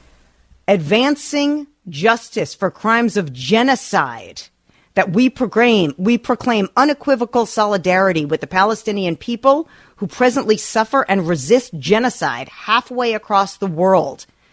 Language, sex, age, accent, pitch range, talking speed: English, female, 40-59, American, 180-230 Hz, 110 wpm